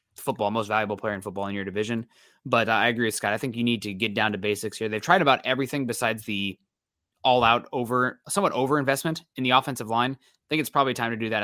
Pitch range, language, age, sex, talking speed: 110-130 Hz, English, 20-39, male, 250 wpm